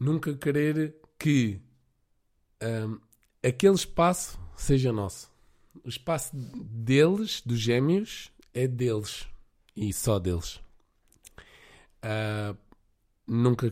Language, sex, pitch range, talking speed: Portuguese, male, 100-135 Hz, 80 wpm